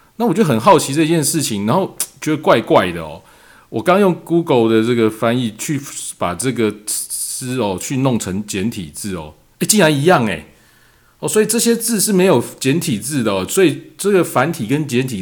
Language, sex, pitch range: Chinese, male, 105-160 Hz